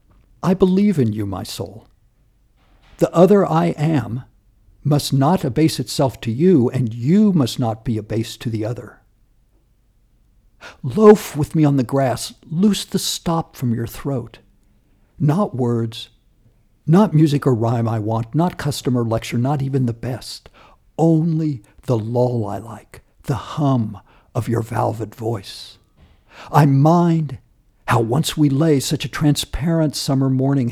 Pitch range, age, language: 115-150 Hz, 60-79, English